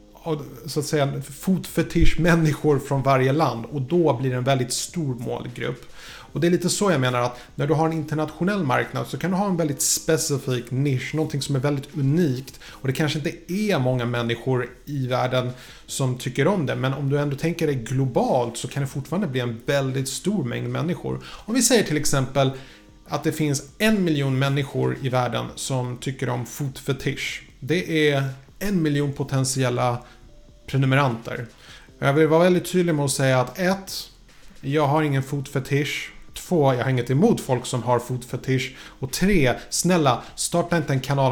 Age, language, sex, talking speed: 30-49, Swedish, male, 180 wpm